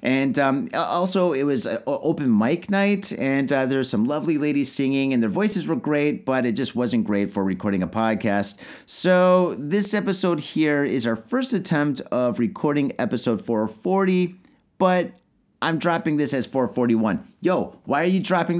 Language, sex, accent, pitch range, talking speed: English, male, American, 125-185 Hz, 170 wpm